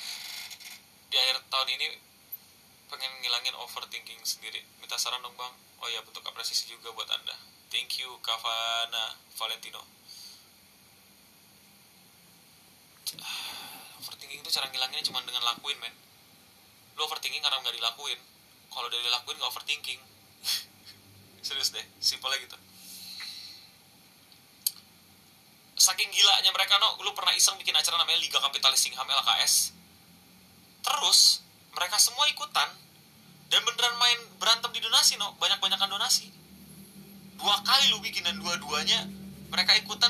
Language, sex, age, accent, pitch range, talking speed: Indonesian, male, 20-39, native, 125-195 Hz, 120 wpm